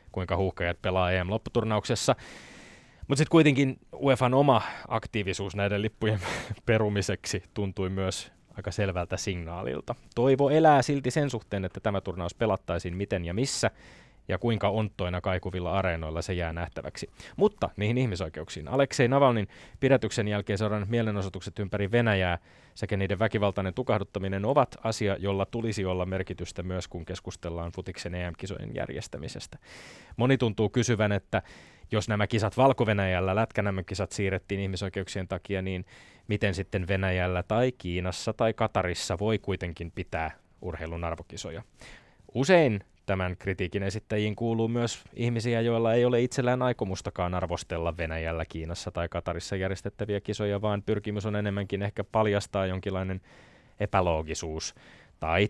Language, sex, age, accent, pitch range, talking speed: Finnish, male, 20-39, native, 90-110 Hz, 130 wpm